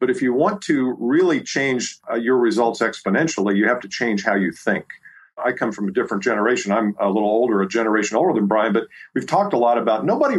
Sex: male